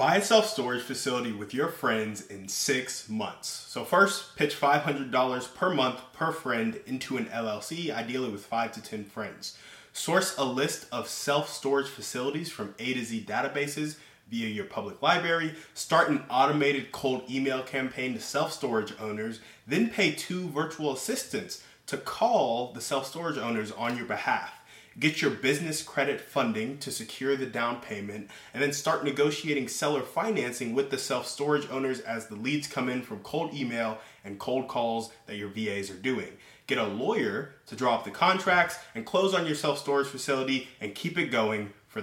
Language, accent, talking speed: English, American, 175 wpm